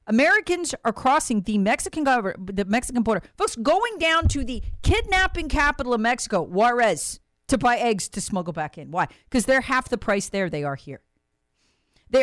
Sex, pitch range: female, 135-225 Hz